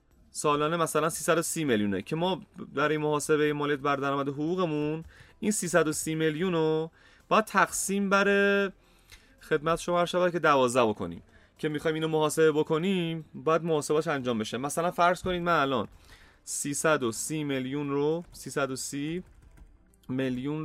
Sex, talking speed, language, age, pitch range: male, 130 wpm, Persian, 30-49, 130-170 Hz